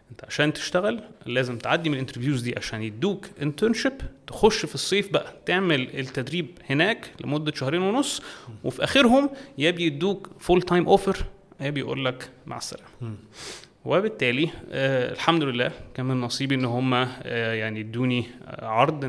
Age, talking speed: 30-49, 140 wpm